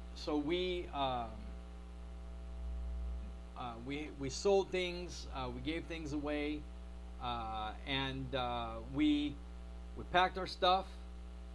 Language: English